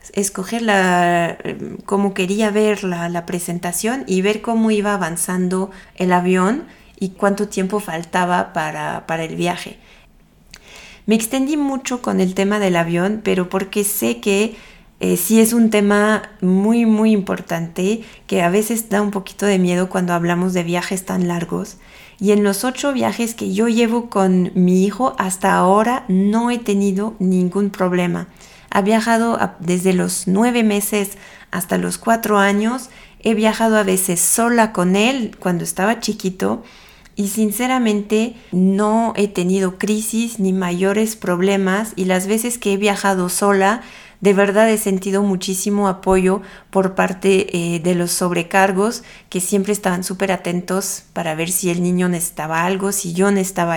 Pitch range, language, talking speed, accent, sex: 185-215 Hz, Spanish, 155 wpm, Mexican, female